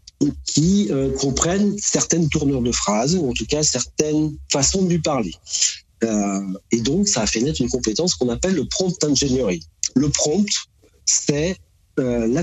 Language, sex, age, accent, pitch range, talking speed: French, male, 40-59, French, 105-150 Hz, 175 wpm